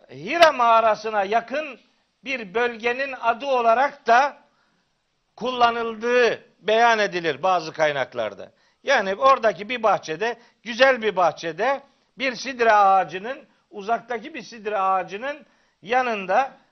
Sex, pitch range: male, 215-260 Hz